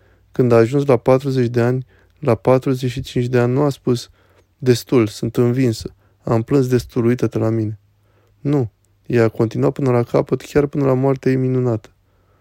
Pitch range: 110-130 Hz